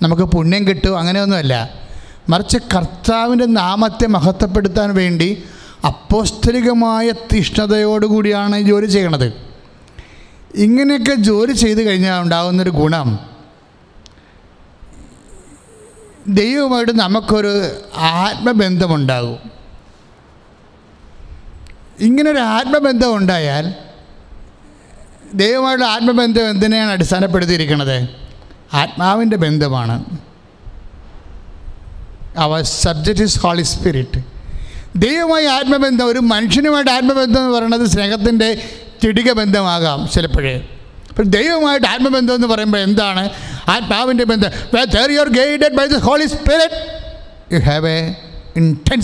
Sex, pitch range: male, 155-230 Hz